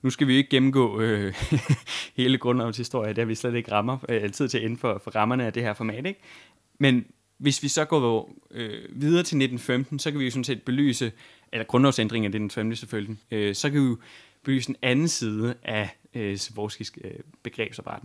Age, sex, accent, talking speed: 20-39, male, native, 205 wpm